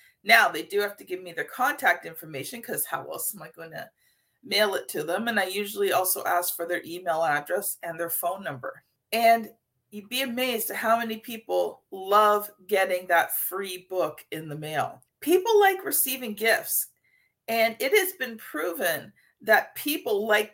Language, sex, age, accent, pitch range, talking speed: English, female, 40-59, American, 190-260 Hz, 180 wpm